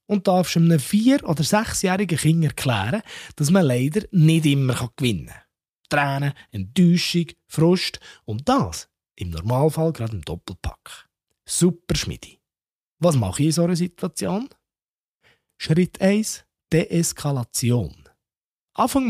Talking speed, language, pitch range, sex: 125 wpm, German, 115-185 Hz, male